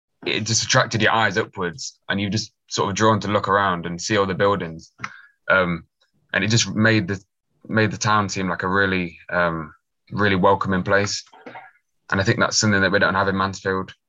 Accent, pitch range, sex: British, 90-105 Hz, male